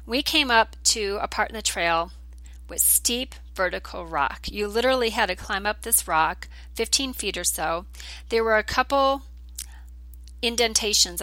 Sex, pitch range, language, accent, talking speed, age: female, 170-225 Hz, English, American, 160 wpm, 40-59